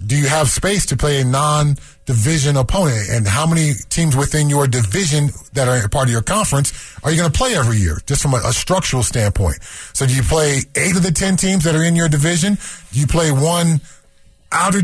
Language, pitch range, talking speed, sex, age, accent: English, 115-155 Hz, 220 wpm, male, 30-49, American